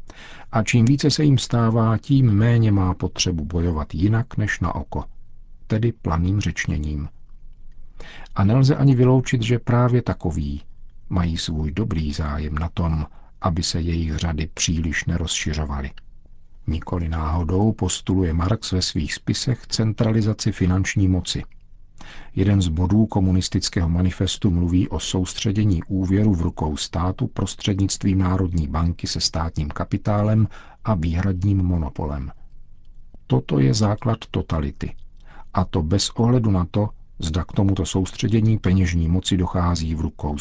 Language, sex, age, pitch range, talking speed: Czech, male, 50-69, 80-105 Hz, 130 wpm